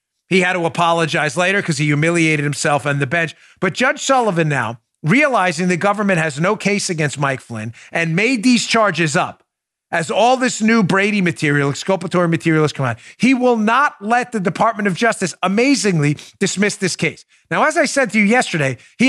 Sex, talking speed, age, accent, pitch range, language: male, 190 wpm, 40-59, American, 175-235 Hz, English